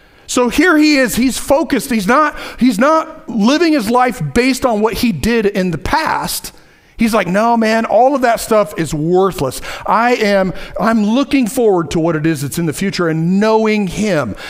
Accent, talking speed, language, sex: American, 195 wpm, English, male